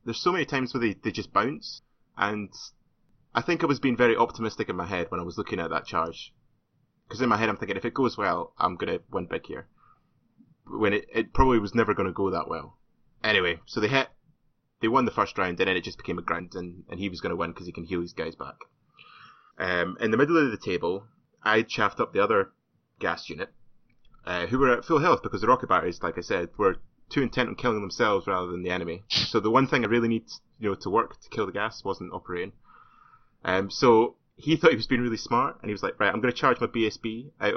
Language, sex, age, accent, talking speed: English, male, 20-39, British, 250 wpm